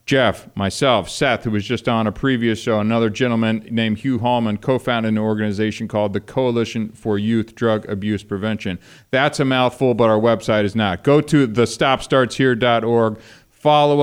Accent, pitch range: American, 100-125 Hz